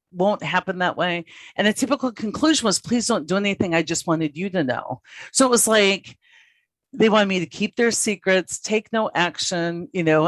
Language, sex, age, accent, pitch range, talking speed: English, female, 50-69, American, 160-220 Hz, 205 wpm